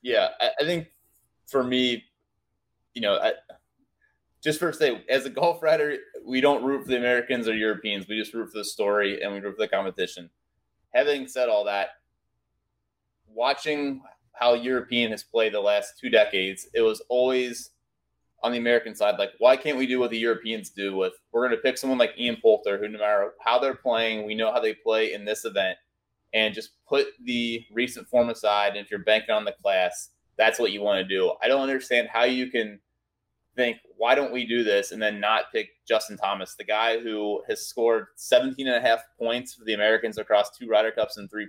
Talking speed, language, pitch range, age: 205 wpm, English, 110-135 Hz, 20-39